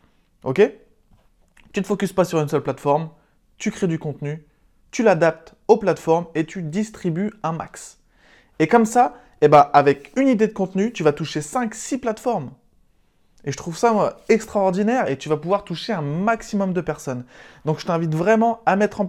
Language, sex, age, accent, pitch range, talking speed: French, male, 20-39, French, 150-215 Hz, 190 wpm